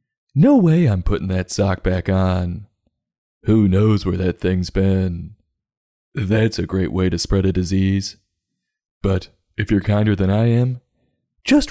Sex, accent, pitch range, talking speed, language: male, American, 95-110 Hz, 155 wpm, English